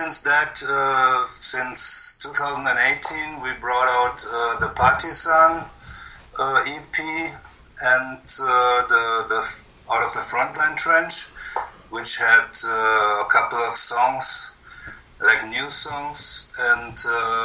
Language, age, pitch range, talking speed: English, 50-69, 125-165 Hz, 115 wpm